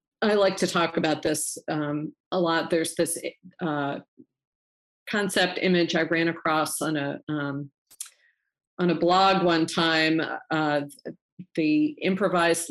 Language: English